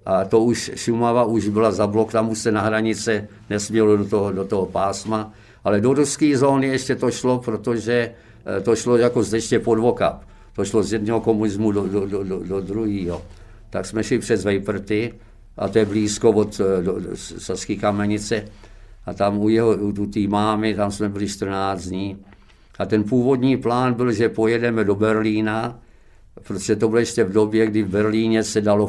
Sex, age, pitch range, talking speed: male, 50-69, 95-110 Hz, 180 wpm